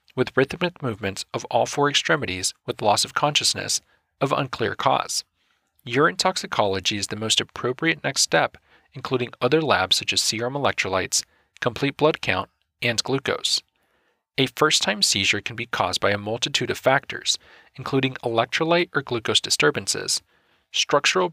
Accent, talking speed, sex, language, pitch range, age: American, 145 wpm, male, English, 120-160 Hz, 40-59